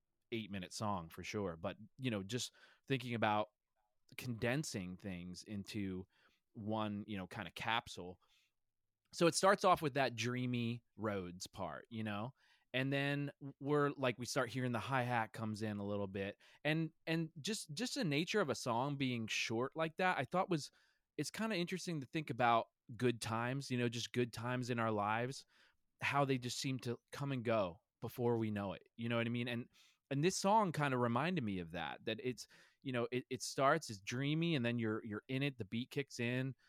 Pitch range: 105-135 Hz